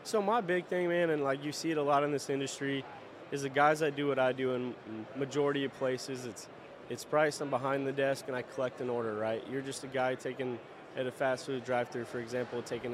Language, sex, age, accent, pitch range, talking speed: English, male, 20-39, American, 130-150 Hz, 245 wpm